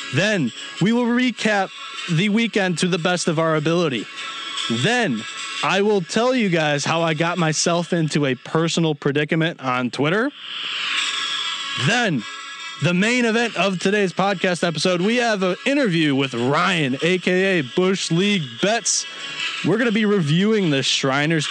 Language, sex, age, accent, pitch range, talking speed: English, male, 20-39, American, 145-185 Hz, 150 wpm